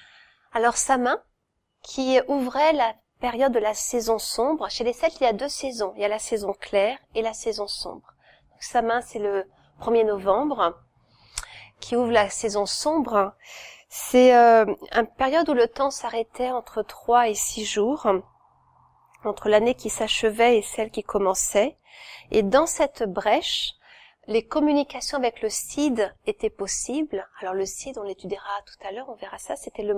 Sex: female